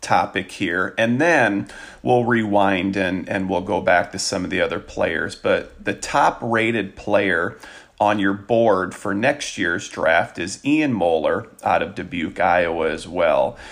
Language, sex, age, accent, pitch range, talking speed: English, male, 40-59, American, 100-120 Hz, 165 wpm